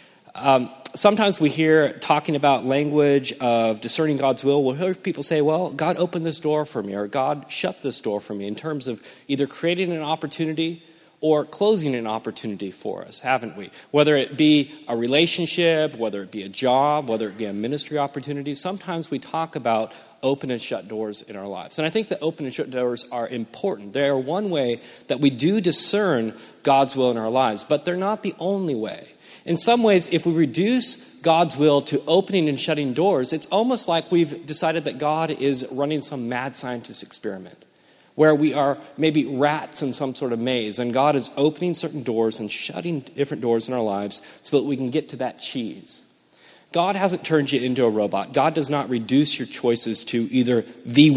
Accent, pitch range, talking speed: American, 120-160 Hz, 205 wpm